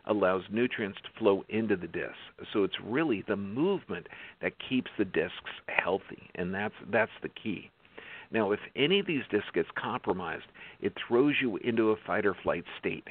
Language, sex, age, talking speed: English, male, 50-69, 180 wpm